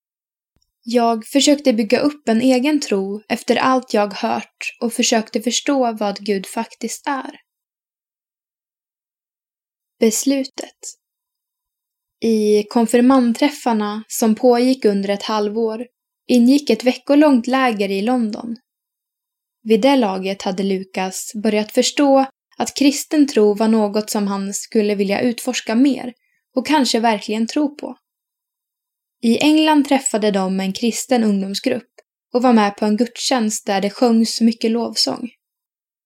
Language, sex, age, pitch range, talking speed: Swedish, female, 10-29, 220-280 Hz, 120 wpm